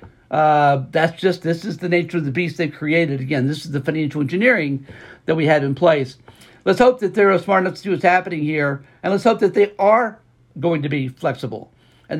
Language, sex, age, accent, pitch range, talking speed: English, male, 60-79, American, 140-175 Hz, 220 wpm